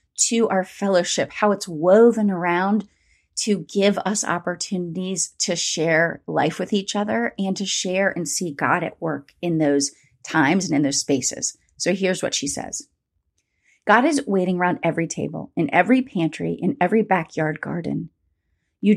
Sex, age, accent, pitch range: female, 30-49, American, 165-210 Hz